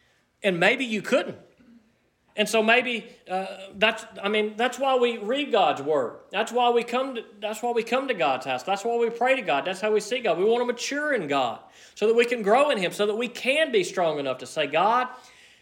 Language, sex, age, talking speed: English, male, 40-59, 240 wpm